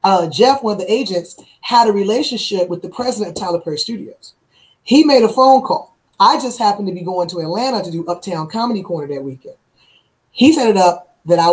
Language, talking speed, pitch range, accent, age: English, 220 wpm, 170-220 Hz, American, 20-39